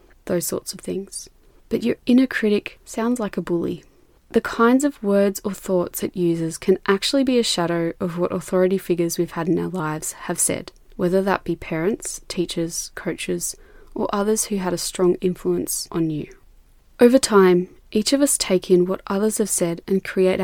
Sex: female